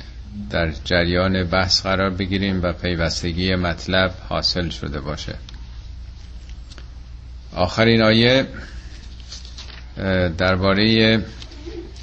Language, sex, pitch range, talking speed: Persian, male, 70-105 Hz, 70 wpm